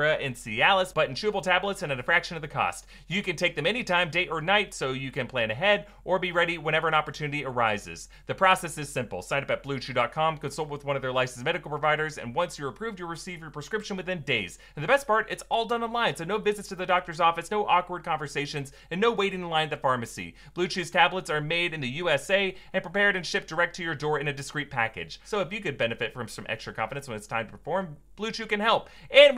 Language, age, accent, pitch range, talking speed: English, 30-49, American, 140-195 Hz, 250 wpm